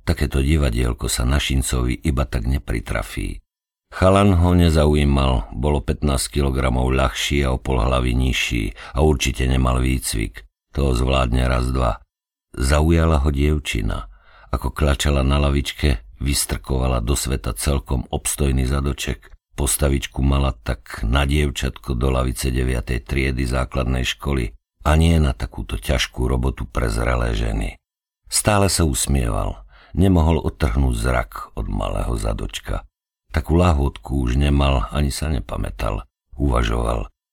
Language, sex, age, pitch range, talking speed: Slovak, male, 50-69, 65-75 Hz, 120 wpm